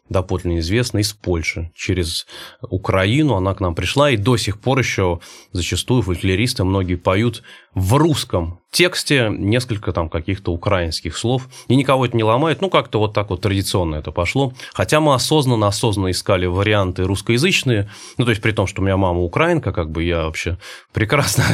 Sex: male